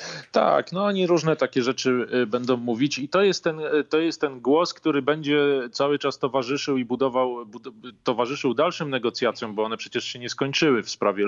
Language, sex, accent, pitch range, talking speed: Polish, male, native, 110-135 Hz, 170 wpm